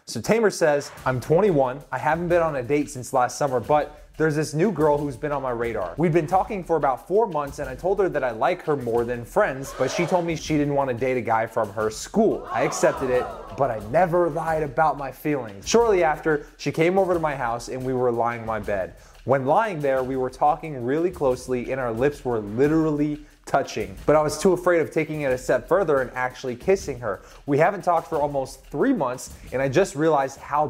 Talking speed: 240 wpm